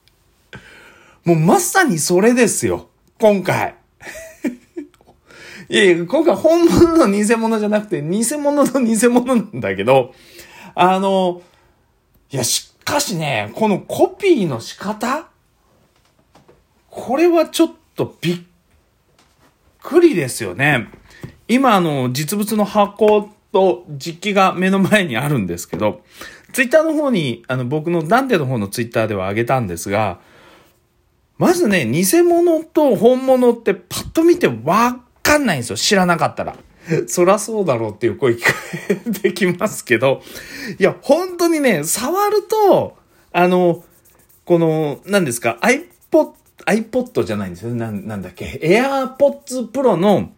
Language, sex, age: Japanese, male, 40-59